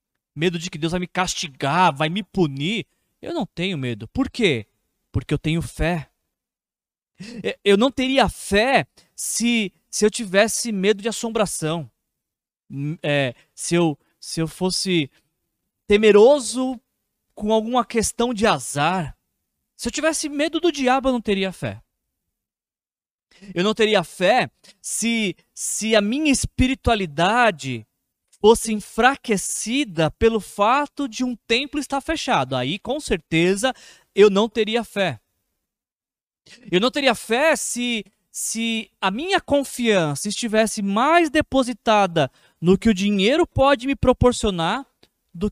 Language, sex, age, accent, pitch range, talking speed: Portuguese, male, 20-39, Brazilian, 175-240 Hz, 130 wpm